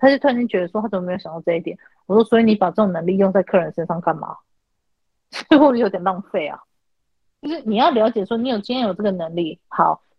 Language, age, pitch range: Chinese, 30-49, 180-235 Hz